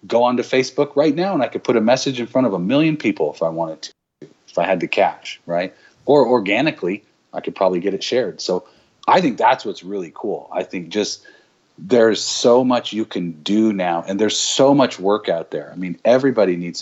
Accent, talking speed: American, 225 wpm